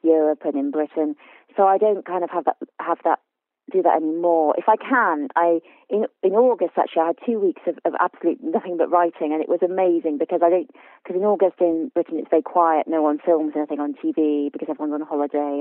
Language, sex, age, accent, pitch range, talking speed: English, female, 30-49, British, 155-175 Hz, 225 wpm